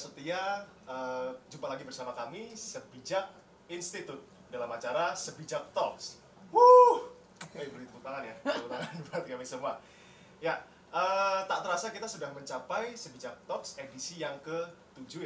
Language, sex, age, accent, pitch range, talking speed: Indonesian, male, 20-39, native, 130-175 Hz, 115 wpm